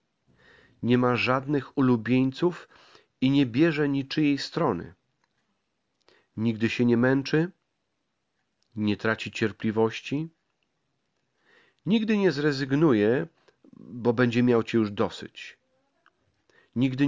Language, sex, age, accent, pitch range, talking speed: Polish, male, 40-59, native, 115-145 Hz, 90 wpm